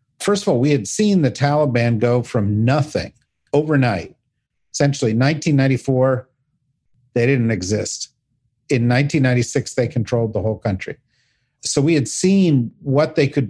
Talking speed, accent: 140 wpm, American